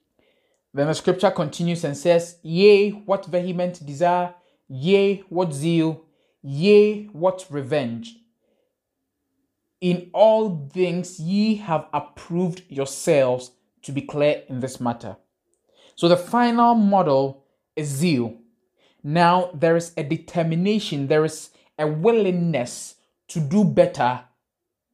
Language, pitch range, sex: English, 145-200 Hz, male